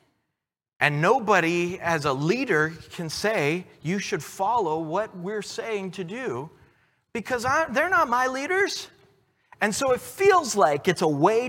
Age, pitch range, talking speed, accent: 40-59, 195-290 Hz, 145 wpm, American